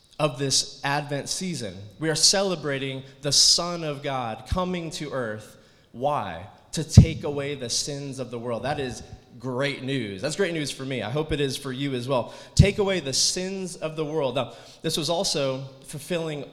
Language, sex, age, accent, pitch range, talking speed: English, male, 20-39, American, 110-150 Hz, 190 wpm